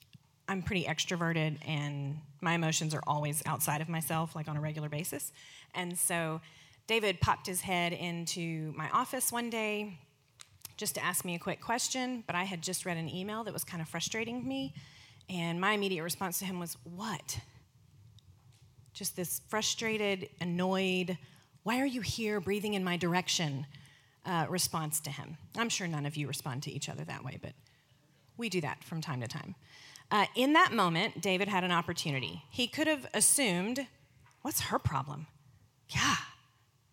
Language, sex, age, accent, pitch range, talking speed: English, female, 30-49, American, 140-190 Hz, 170 wpm